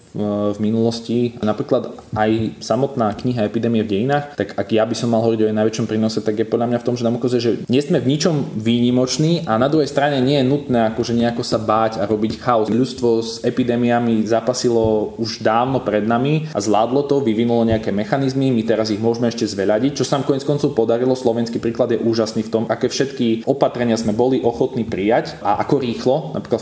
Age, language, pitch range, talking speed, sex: 20-39, Slovak, 105-120 Hz, 205 wpm, male